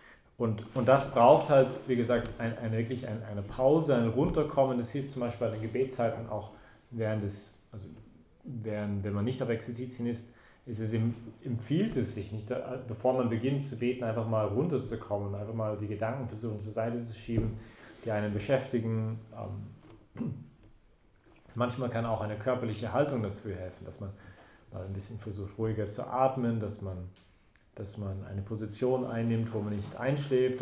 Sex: male